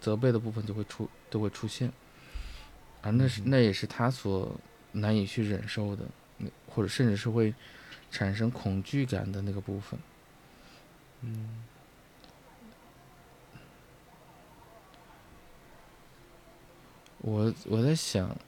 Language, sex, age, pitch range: Chinese, male, 20-39, 105-130 Hz